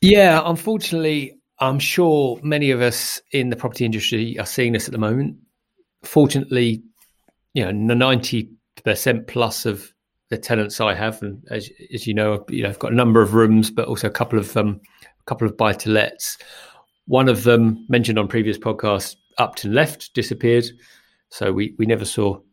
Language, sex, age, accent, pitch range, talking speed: English, male, 30-49, British, 105-125 Hz, 185 wpm